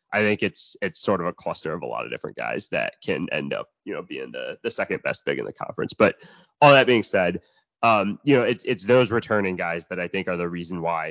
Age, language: 20-39, English